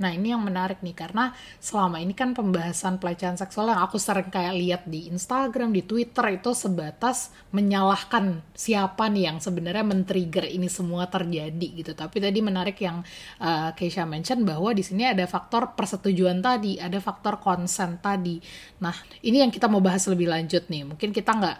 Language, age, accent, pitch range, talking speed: Indonesian, 30-49, native, 175-215 Hz, 175 wpm